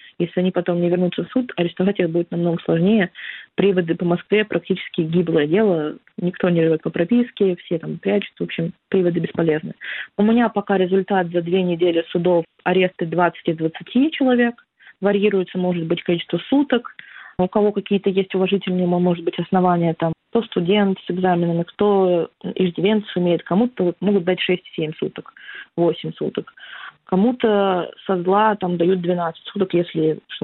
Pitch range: 170-200 Hz